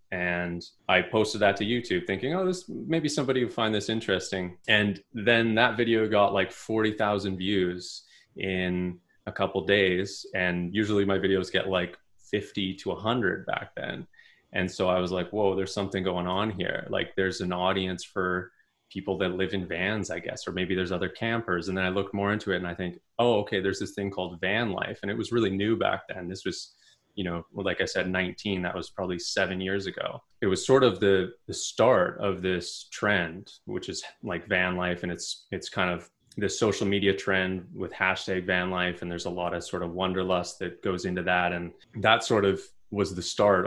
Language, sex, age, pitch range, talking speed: English, male, 20-39, 90-100 Hz, 210 wpm